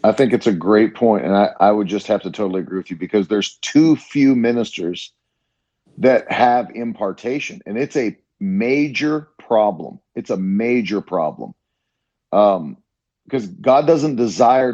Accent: American